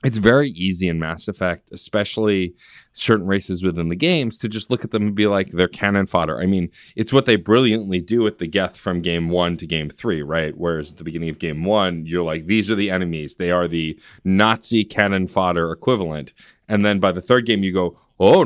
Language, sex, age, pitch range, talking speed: English, male, 30-49, 90-115 Hz, 225 wpm